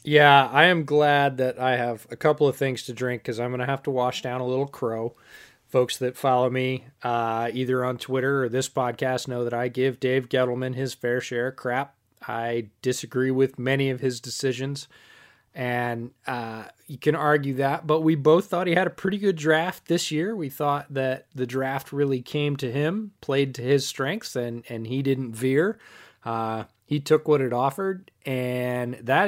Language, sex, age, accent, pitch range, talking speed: English, male, 20-39, American, 120-140 Hz, 200 wpm